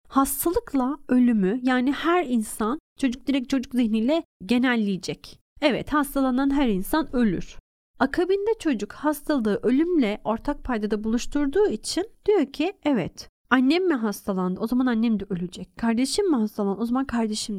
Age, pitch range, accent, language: 30-49, 230-310 Hz, native, Turkish